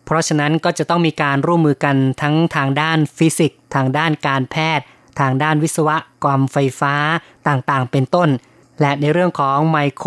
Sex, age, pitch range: female, 20-39, 135-160 Hz